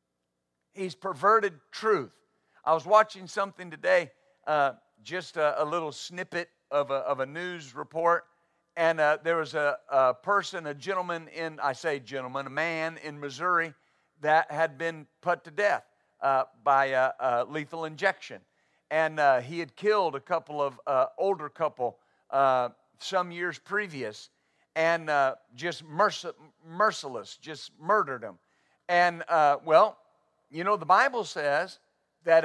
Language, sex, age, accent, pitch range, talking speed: English, male, 50-69, American, 140-195 Hz, 145 wpm